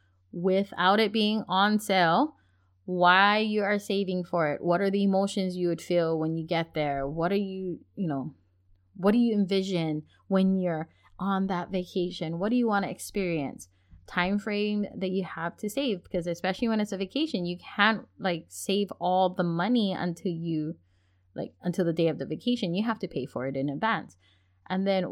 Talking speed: 195 wpm